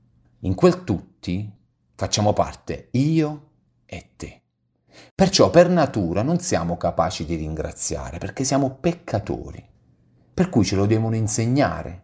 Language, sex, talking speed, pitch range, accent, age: Italian, male, 125 wpm, 85-115 Hz, native, 30-49